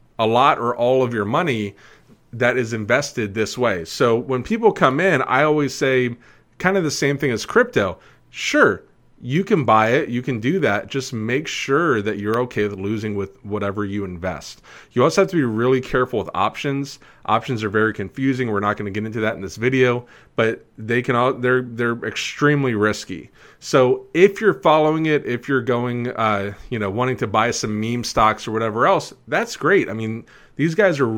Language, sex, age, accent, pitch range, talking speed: English, male, 30-49, American, 110-140 Hz, 205 wpm